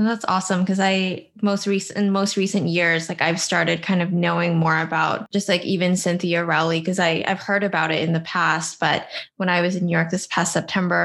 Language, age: English, 10-29